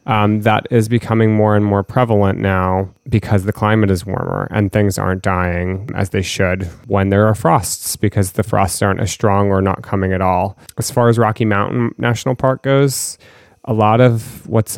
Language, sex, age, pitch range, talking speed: English, male, 30-49, 100-115 Hz, 195 wpm